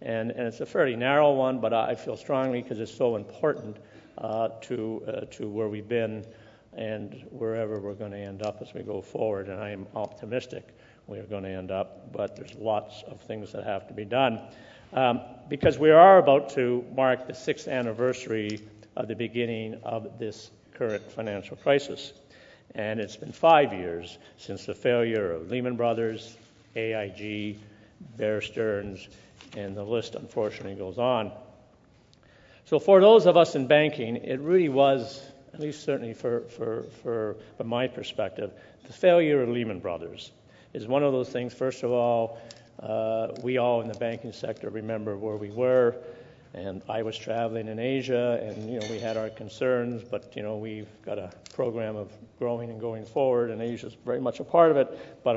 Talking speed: 180 wpm